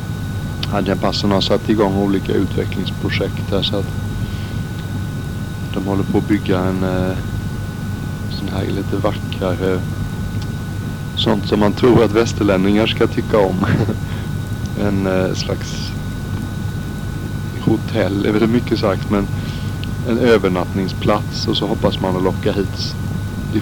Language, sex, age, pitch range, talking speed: Swedish, male, 60-79, 95-110 Hz, 115 wpm